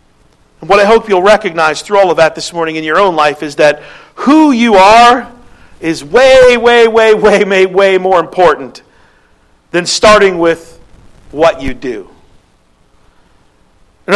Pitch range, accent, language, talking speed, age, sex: 185-230 Hz, American, English, 155 wpm, 50-69, male